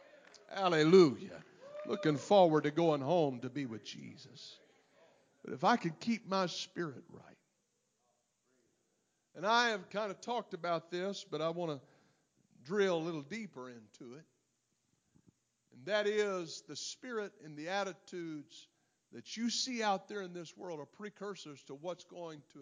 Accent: American